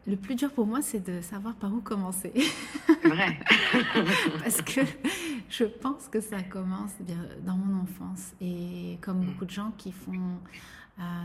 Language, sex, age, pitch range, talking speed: French, female, 30-49, 185-210 Hz, 165 wpm